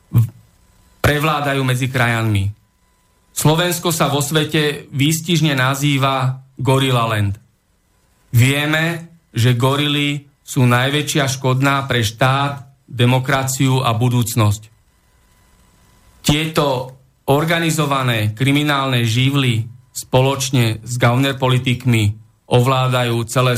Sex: male